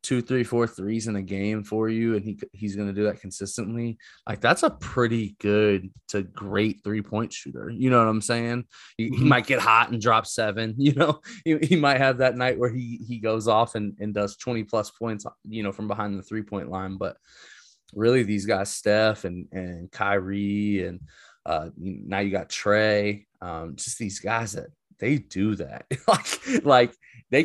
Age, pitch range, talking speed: 20-39, 105-135 Hz, 195 wpm